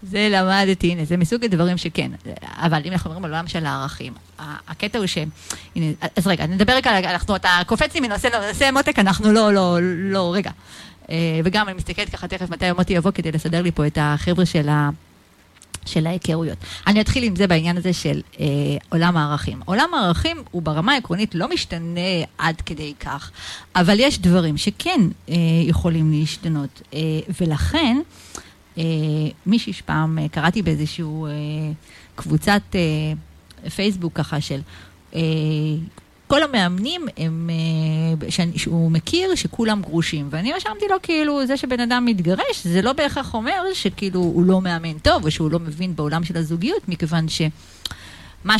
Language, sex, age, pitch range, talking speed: Hebrew, female, 30-49, 160-205 Hz, 155 wpm